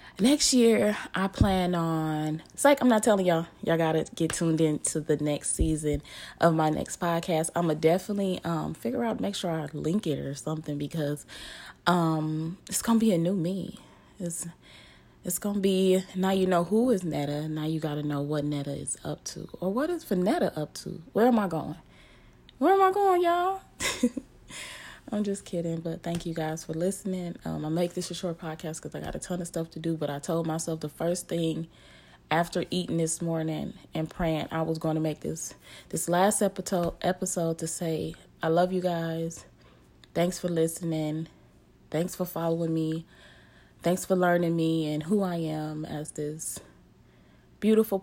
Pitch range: 155-185 Hz